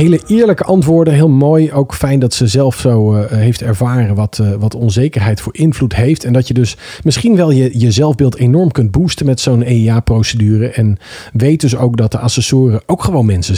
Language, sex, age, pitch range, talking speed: Dutch, male, 40-59, 105-140 Hz, 195 wpm